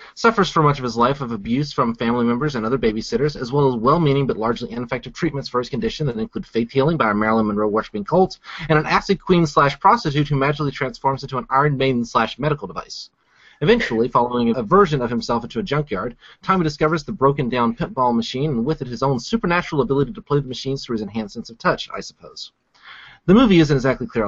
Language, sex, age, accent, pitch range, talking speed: English, male, 30-49, American, 120-155 Hz, 215 wpm